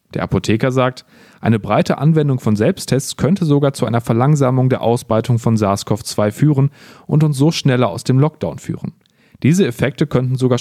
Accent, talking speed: German, 170 wpm